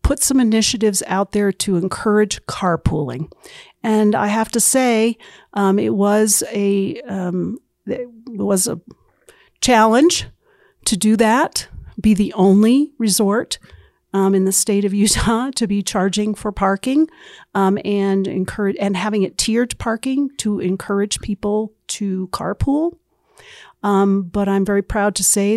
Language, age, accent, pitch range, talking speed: English, 50-69, American, 195-230 Hz, 140 wpm